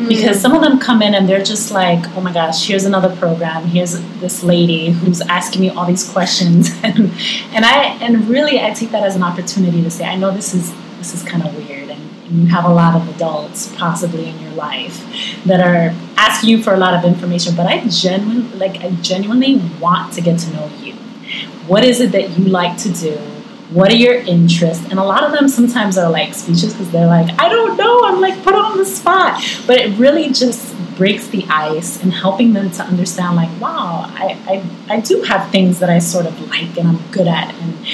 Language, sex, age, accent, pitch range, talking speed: English, female, 30-49, American, 175-235 Hz, 225 wpm